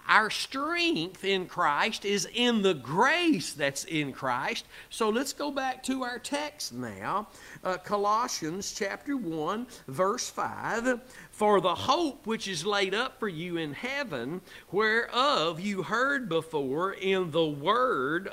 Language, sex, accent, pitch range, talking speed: English, male, American, 165-245 Hz, 140 wpm